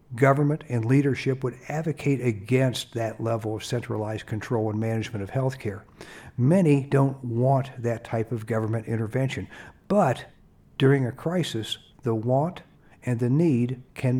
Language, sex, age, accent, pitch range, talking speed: English, male, 60-79, American, 115-150 Hz, 145 wpm